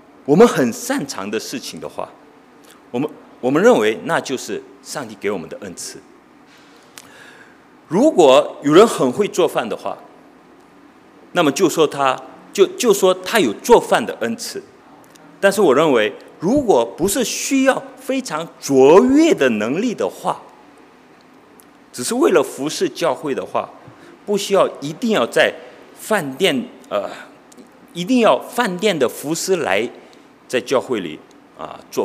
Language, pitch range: English, 185-300 Hz